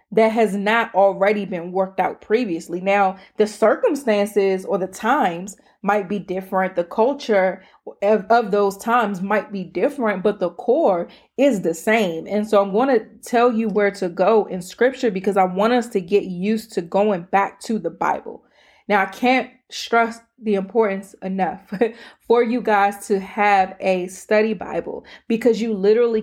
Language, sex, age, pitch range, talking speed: English, female, 20-39, 190-225 Hz, 170 wpm